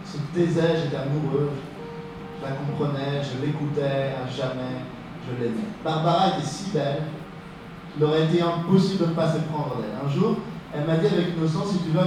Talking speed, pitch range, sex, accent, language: 190 wpm, 140-170 Hz, male, French, French